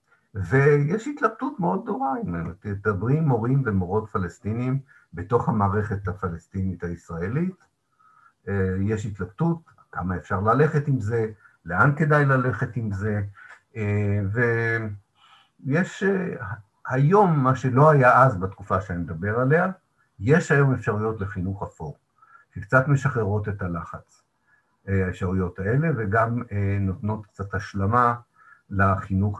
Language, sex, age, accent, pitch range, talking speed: Hebrew, male, 50-69, native, 95-135 Hz, 105 wpm